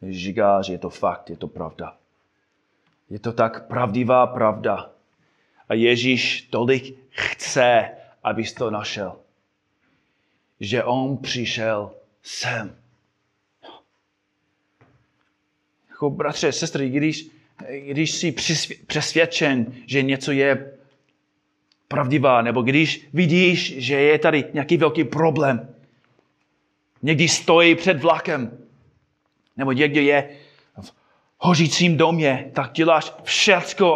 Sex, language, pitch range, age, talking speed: male, Czech, 125-165 Hz, 30-49, 100 wpm